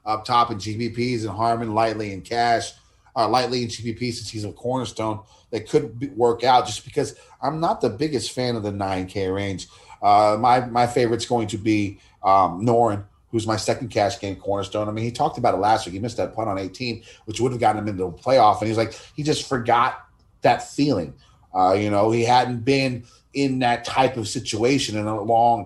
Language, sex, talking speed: English, male, 215 wpm